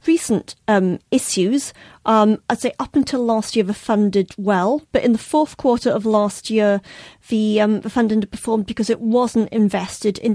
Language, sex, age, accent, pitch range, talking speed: English, female, 40-59, British, 205-240 Hz, 185 wpm